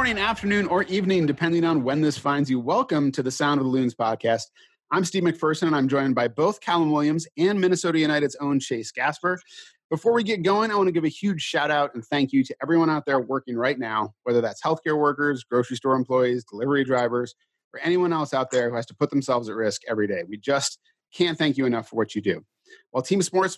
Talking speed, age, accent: 235 wpm, 30-49, American